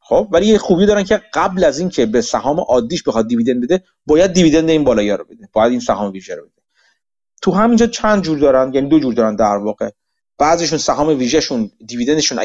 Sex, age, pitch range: male, 30-49, 115-180 Hz